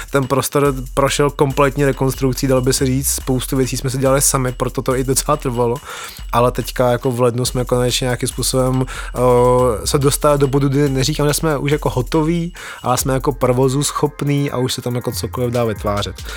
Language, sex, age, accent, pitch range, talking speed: Czech, male, 20-39, native, 130-140 Hz, 200 wpm